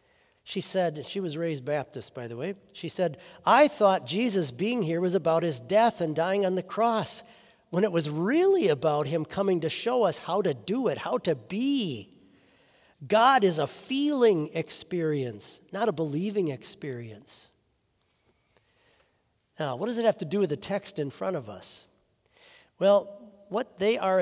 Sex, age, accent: male, 50-69, American